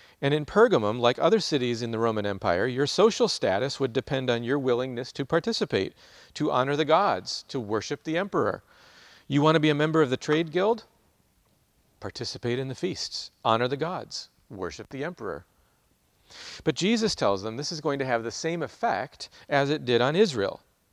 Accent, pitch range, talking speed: American, 110-155 Hz, 185 wpm